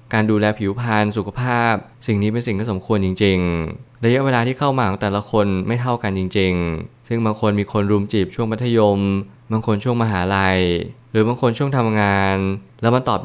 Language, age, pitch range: Thai, 20-39, 100-120 Hz